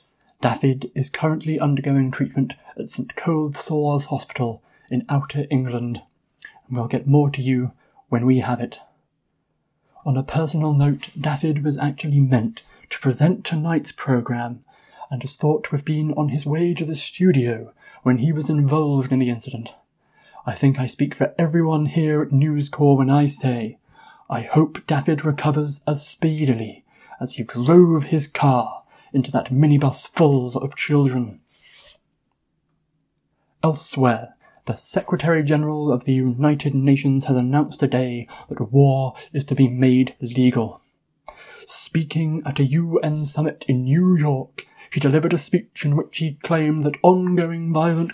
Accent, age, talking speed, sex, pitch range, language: British, 30-49, 150 wpm, male, 130-155 Hz, English